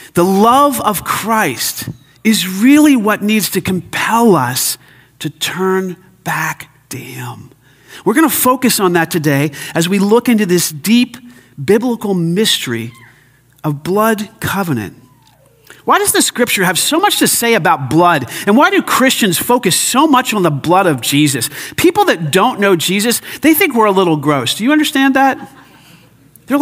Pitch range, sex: 150-225 Hz, male